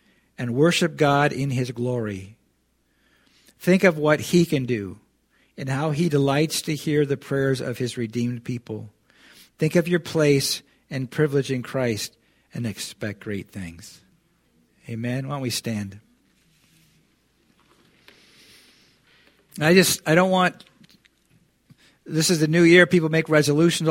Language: English